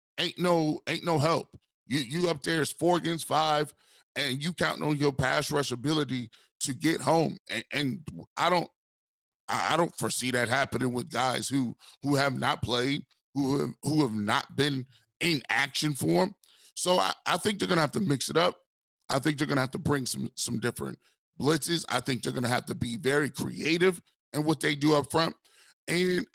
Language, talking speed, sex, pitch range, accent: English, 200 wpm, male, 135-160 Hz, American